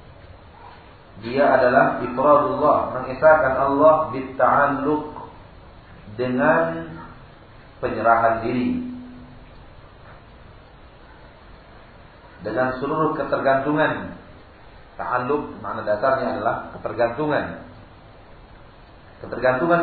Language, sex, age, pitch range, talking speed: Malay, male, 40-59, 110-150 Hz, 55 wpm